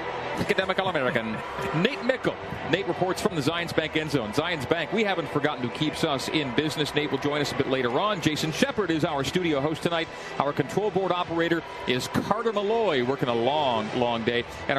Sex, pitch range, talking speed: male, 140-170 Hz, 205 wpm